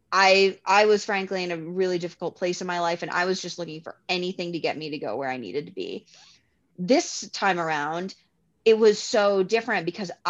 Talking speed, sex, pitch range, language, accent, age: 215 wpm, female, 170-200 Hz, English, American, 20-39